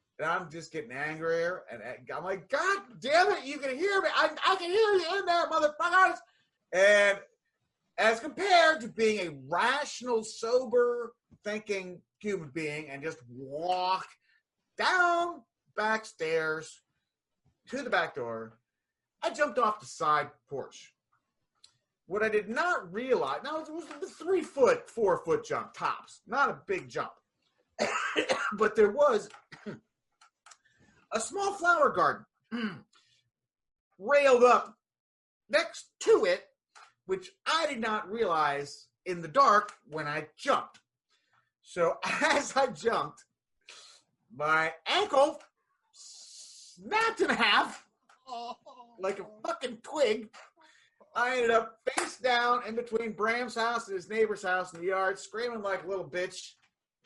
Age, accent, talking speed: 30-49, American, 130 wpm